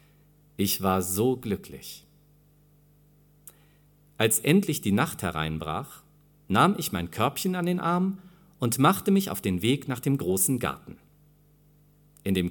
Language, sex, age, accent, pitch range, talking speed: German, male, 40-59, German, 100-150 Hz, 135 wpm